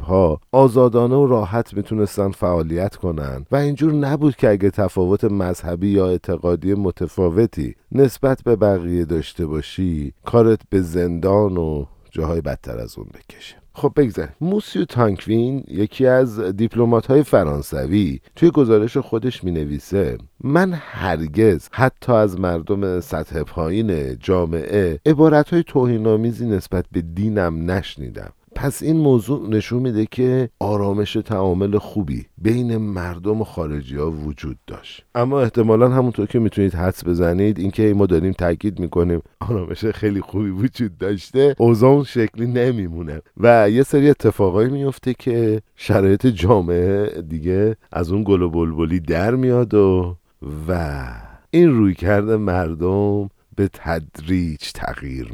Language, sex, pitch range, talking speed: Persian, male, 90-120 Hz, 130 wpm